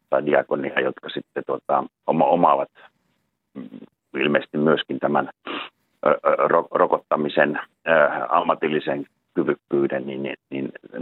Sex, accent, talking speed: male, native, 100 wpm